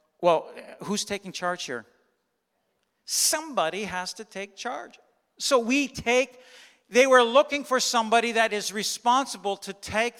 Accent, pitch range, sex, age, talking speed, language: American, 130-200 Hz, male, 50-69, 135 wpm, English